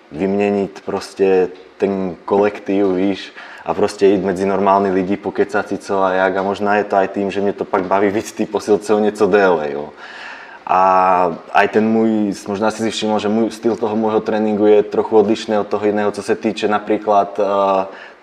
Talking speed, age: 185 wpm, 20-39